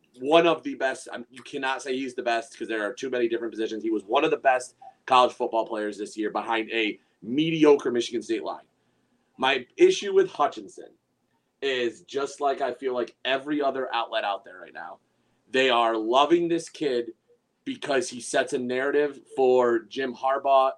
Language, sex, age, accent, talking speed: English, male, 30-49, American, 185 wpm